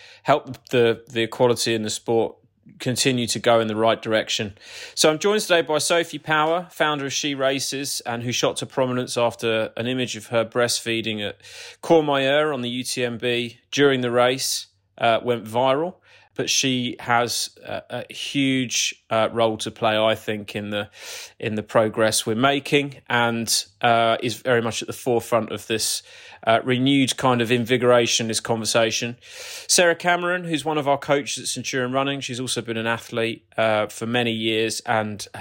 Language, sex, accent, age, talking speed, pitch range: English, male, British, 30-49, 175 wpm, 115-135 Hz